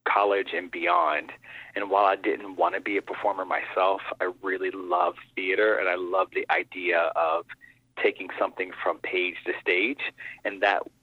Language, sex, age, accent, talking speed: English, male, 30-49, American, 170 wpm